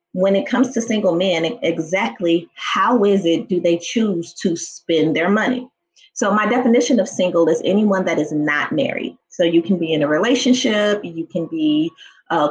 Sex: female